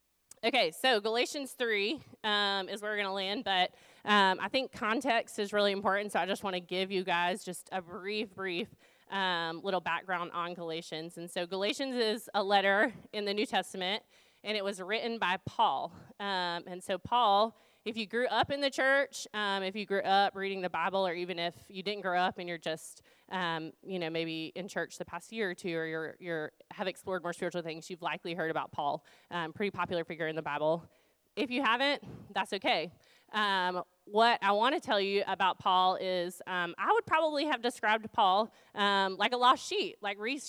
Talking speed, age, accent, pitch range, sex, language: 210 wpm, 20-39, American, 175-215 Hz, female, English